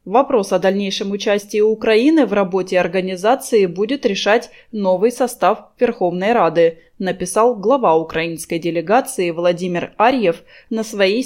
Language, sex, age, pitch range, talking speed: Russian, female, 20-39, 180-235 Hz, 115 wpm